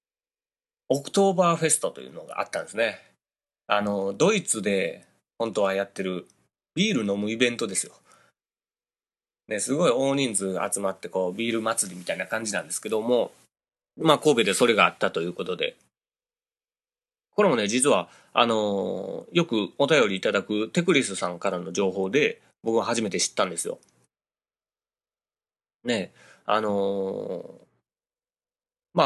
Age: 30-49